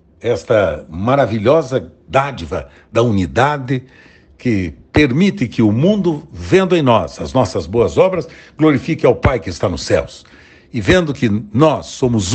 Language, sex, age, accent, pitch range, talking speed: Portuguese, male, 60-79, Brazilian, 110-155 Hz, 140 wpm